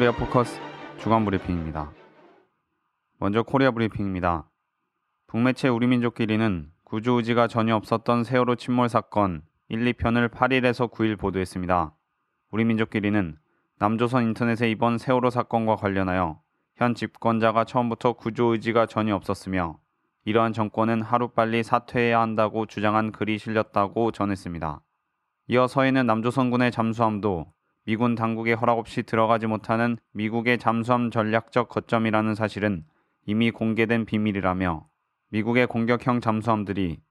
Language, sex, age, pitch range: Korean, male, 20-39, 105-120 Hz